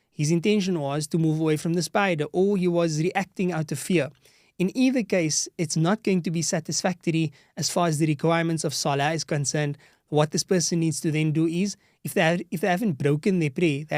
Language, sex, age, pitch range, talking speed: English, male, 20-39, 150-180 Hz, 220 wpm